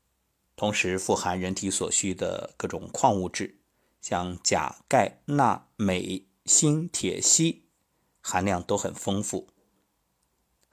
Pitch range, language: 85-115 Hz, Chinese